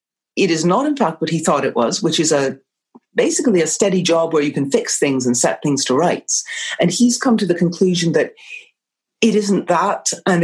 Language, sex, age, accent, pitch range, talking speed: English, female, 40-59, British, 165-205 Hz, 220 wpm